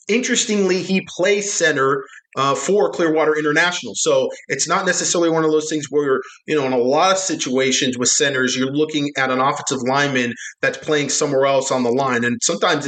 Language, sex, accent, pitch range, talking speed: English, male, American, 140-175 Hz, 190 wpm